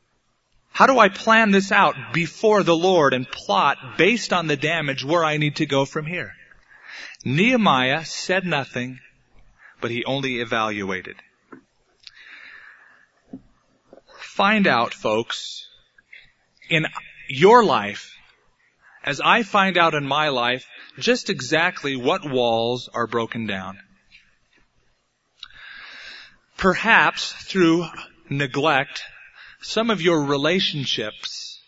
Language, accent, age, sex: English, American, 30-49, male